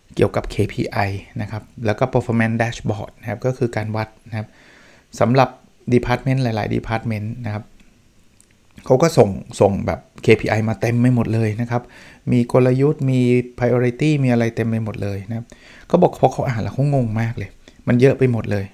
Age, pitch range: 60-79, 110-135 Hz